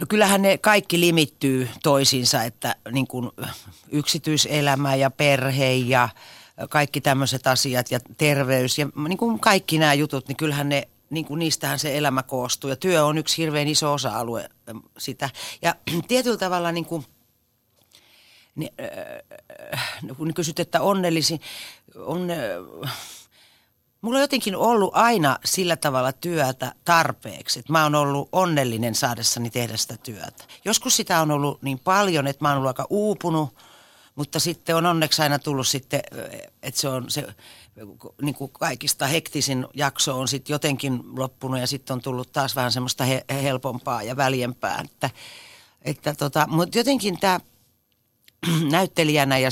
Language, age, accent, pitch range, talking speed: Finnish, 40-59, native, 130-165 Hz, 145 wpm